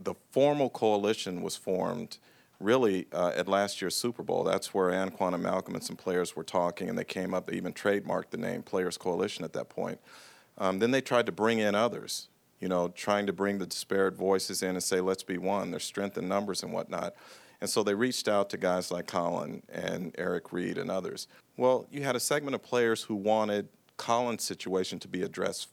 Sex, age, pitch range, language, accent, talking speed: male, 40-59, 95-110 Hz, English, American, 210 wpm